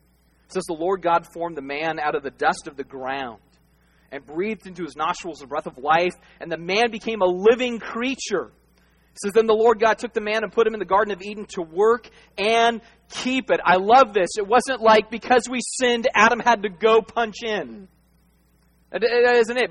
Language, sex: English, male